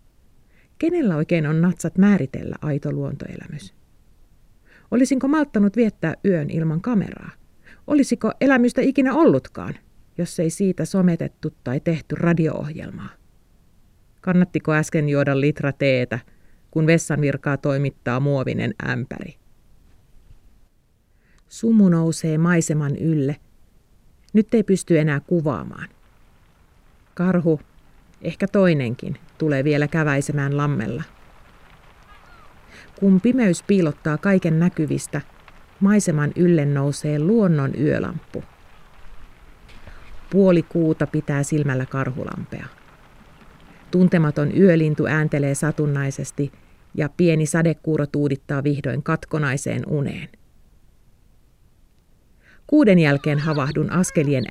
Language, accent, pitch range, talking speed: Finnish, native, 140-180 Hz, 90 wpm